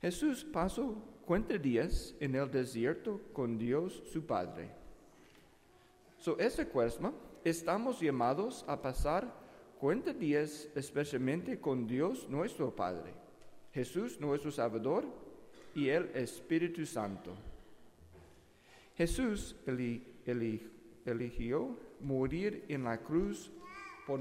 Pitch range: 125-175 Hz